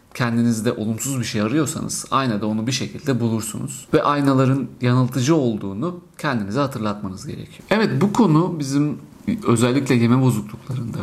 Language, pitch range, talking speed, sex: Turkish, 110-135 Hz, 130 wpm, male